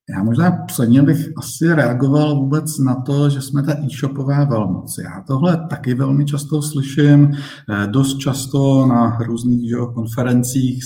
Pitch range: 120-145 Hz